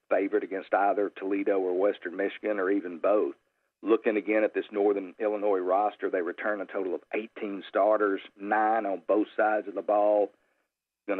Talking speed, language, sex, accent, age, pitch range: 170 wpm, English, male, American, 50-69, 100-110 Hz